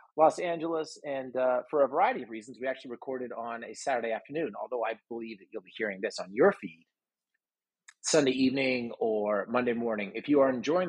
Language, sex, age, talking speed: English, male, 30-49, 200 wpm